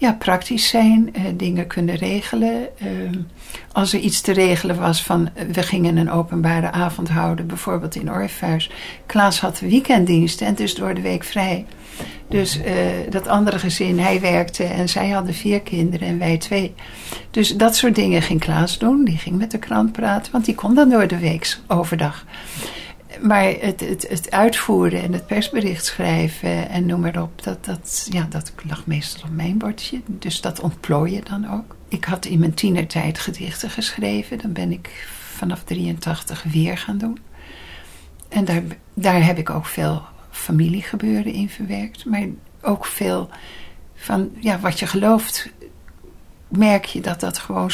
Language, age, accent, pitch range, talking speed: Dutch, 60-79, Dutch, 165-205 Hz, 165 wpm